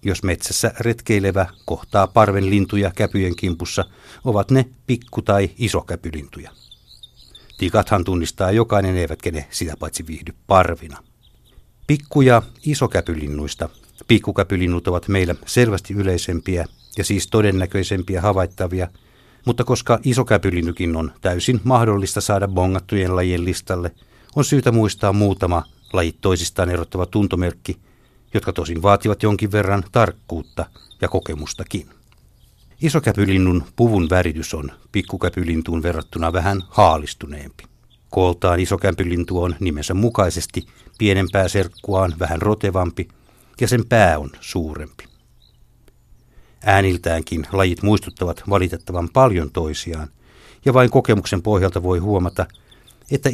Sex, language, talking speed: male, Finnish, 105 wpm